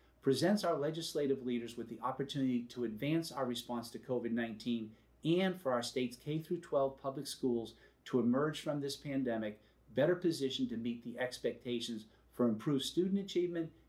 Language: English